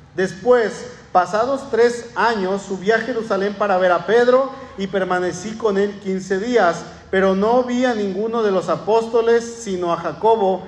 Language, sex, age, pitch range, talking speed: Spanish, male, 40-59, 170-220 Hz, 155 wpm